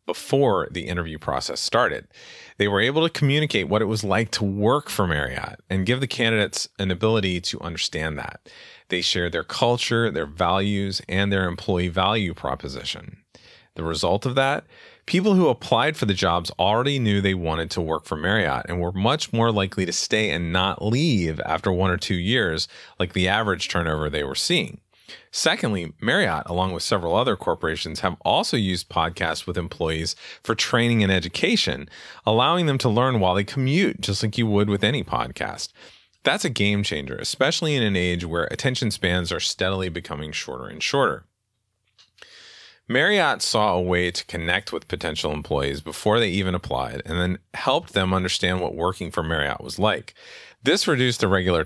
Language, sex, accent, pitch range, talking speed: English, male, American, 85-110 Hz, 180 wpm